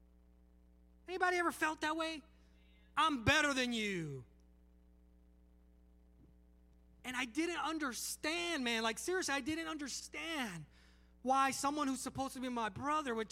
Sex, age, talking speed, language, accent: male, 30-49, 125 wpm, English, American